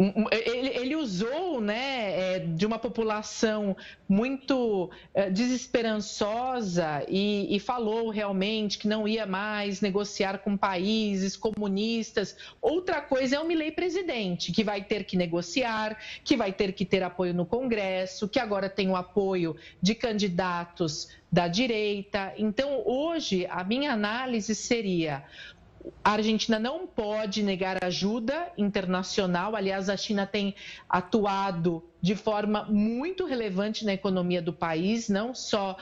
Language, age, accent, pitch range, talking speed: Portuguese, 40-59, Brazilian, 190-230 Hz, 130 wpm